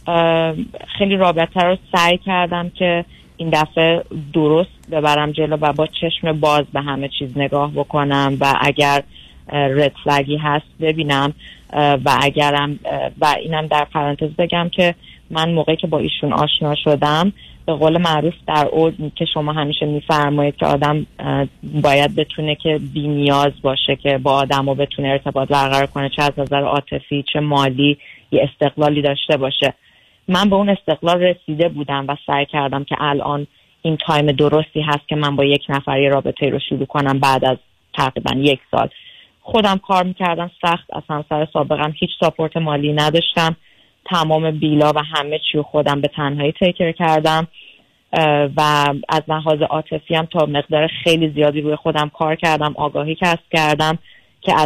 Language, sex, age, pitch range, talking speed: Persian, female, 30-49, 145-160 Hz, 160 wpm